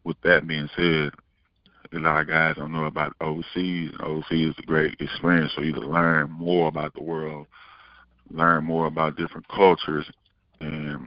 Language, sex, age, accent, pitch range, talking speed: English, male, 20-39, American, 75-85 Hz, 180 wpm